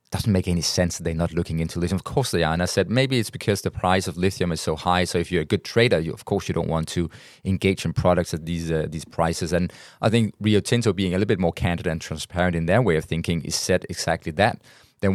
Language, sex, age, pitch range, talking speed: English, male, 20-39, 80-95 Hz, 280 wpm